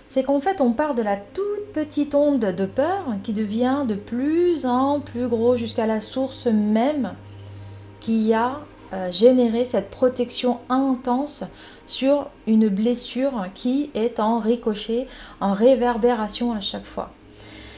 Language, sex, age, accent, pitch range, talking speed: French, female, 30-49, French, 220-270 Hz, 140 wpm